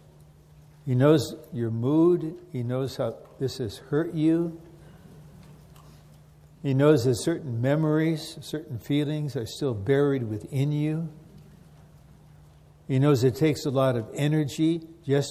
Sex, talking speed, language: male, 125 wpm, English